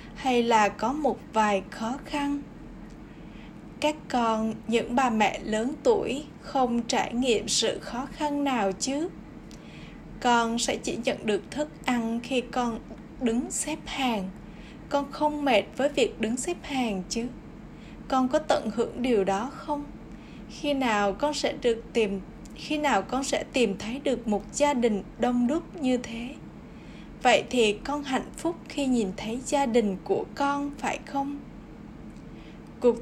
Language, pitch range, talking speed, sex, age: Vietnamese, 220-280 Hz, 155 wpm, female, 10-29